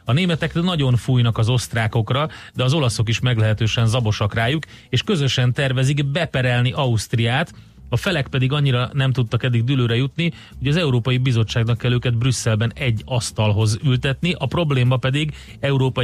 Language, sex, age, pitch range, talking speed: Hungarian, male, 30-49, 115-140 Hz, 155 wpm